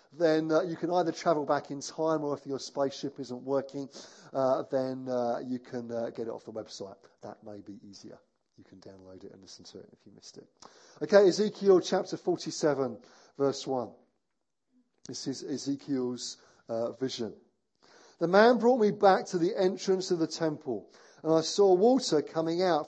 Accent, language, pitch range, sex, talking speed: British, English, 130-175 Hz, male, 185 wpm